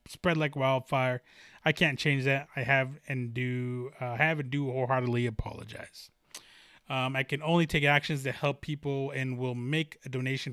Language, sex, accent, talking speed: English, male, American, 175 wpm